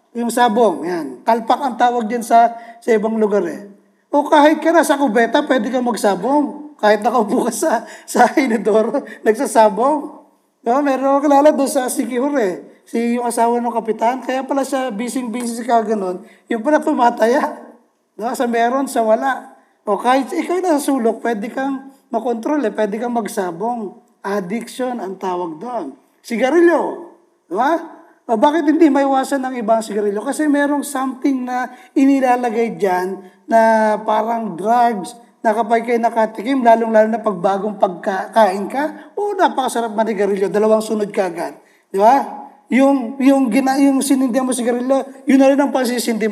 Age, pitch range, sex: 20-39, 225-280 Hz, male